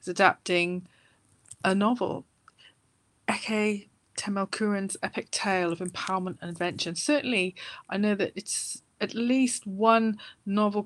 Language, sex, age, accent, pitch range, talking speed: English, female, 30-49, British, 180-215 Hz, 110 wpm